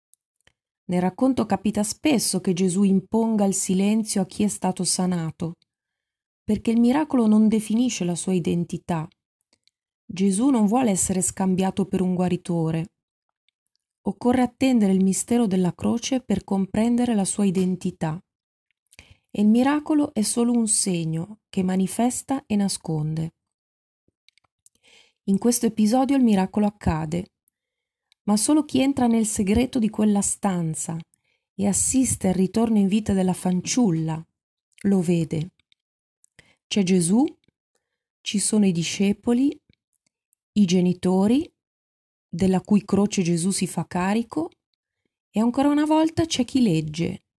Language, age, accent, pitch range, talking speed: Italian, 20-39, native, 180-235 Hz, 125 wpm